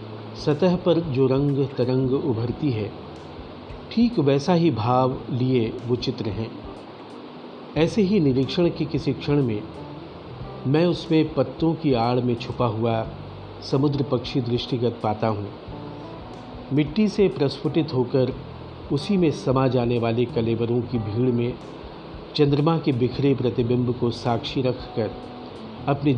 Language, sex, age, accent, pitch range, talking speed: Hindi, male, 50-69, native, 115-150 Hz, 125 wpm